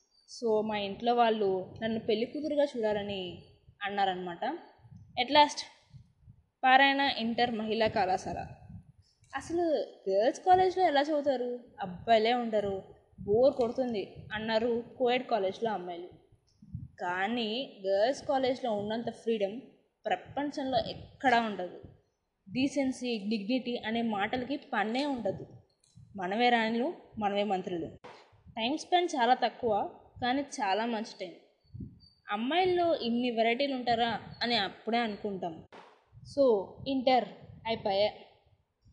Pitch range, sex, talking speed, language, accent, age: 205-270 Hz, female, 95 wpm, Telugu, native, 20-39